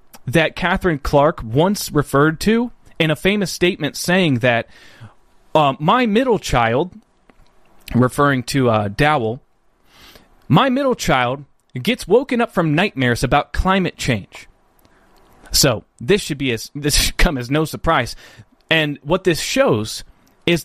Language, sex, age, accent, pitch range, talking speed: English, male, 30-49, American, 130-185 Hz, 130 wpm